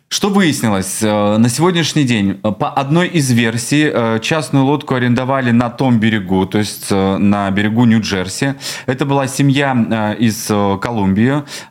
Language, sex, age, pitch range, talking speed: Russian, male, 20-39, 105-140 Hz, 130 wpm